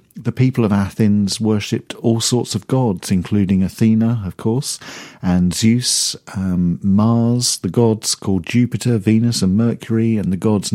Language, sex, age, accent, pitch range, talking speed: English, male, 50-69, British, 95-115 Hz, 150 wpm